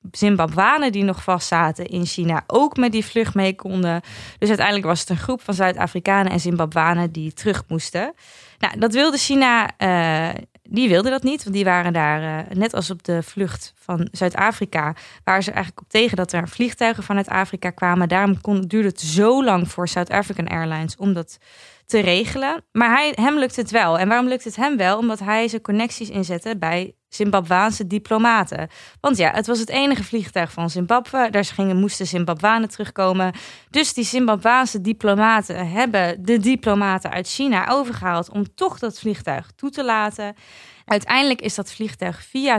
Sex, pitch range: female, 180-230 Hz